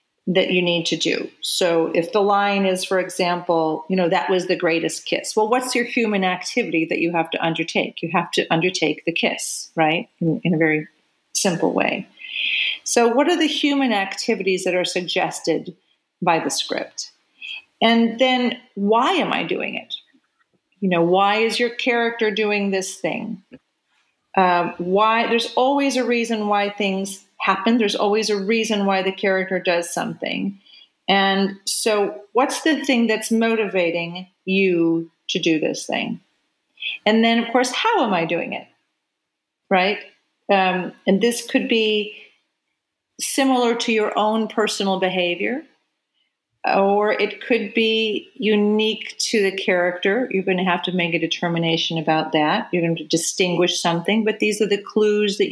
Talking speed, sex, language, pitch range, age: 160 wpm, female, English, 175-225 Hz, 40-59